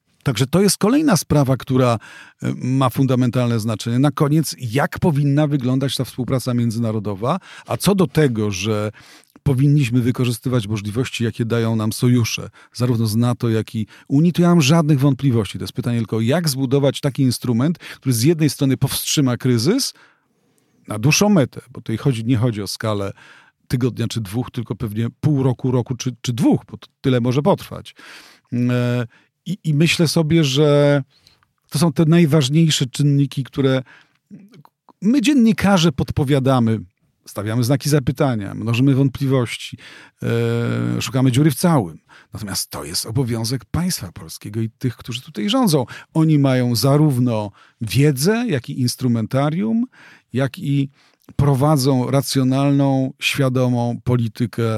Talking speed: 140 wpm